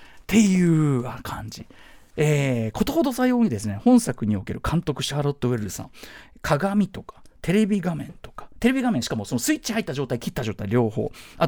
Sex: male